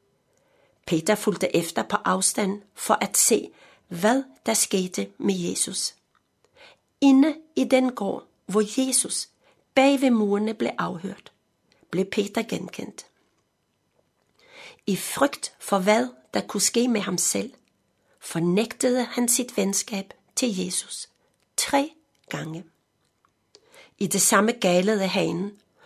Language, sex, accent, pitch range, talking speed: Danish, female, native, 190-250 Hz, 115 wpm